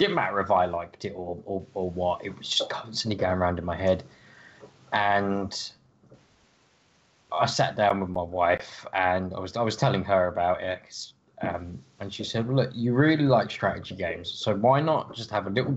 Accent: British